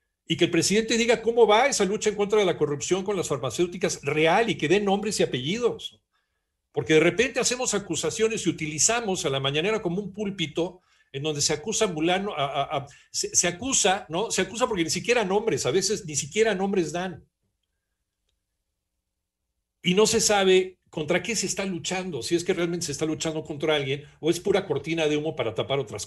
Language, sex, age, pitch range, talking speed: Spanish, male, 60-79, 150-200 Hz, 205 wpm